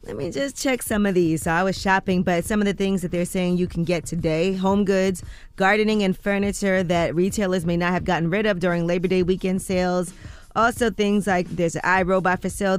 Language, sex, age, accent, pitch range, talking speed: English, female, 20-39, American, 170-205 Hz, 225 wpm